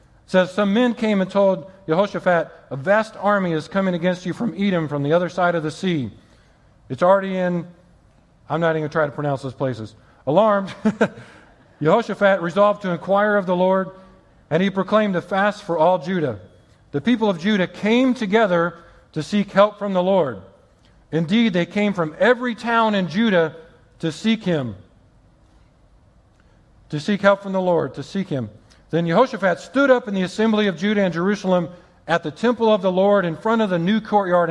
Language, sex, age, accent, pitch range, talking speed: English, male, 50-69, American, 165-205 Hz, 190 wpm